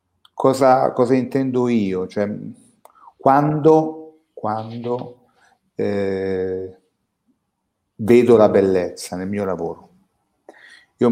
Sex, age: male, 30-49